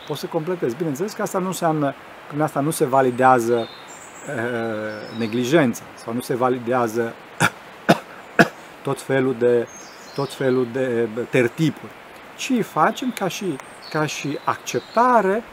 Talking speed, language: 125 wpm, Romanian